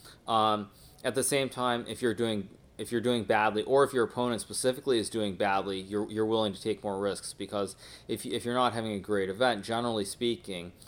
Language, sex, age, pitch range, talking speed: English, male, 30-49, 100-120 Hz, 210 wpm